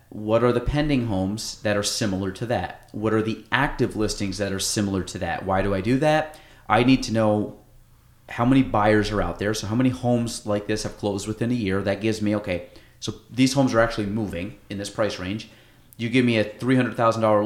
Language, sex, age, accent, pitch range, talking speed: English, male, 30-49, American, 105-125 Hz, 235 wpm